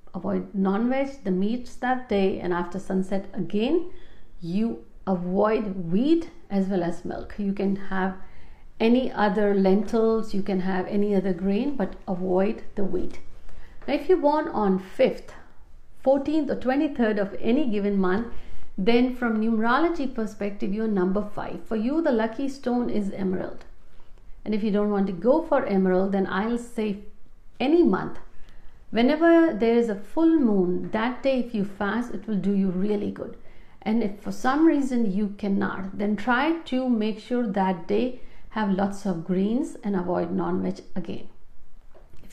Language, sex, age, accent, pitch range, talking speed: Hindi, female, 50-69, native, 190-250 Hz, 165 wpm